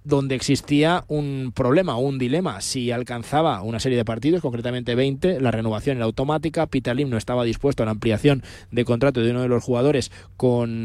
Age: 20-39